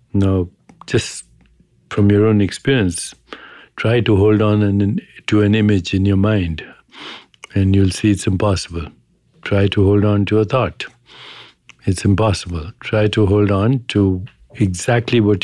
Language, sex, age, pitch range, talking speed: English, male, 60-79, 100-110 Hz, 145 wpm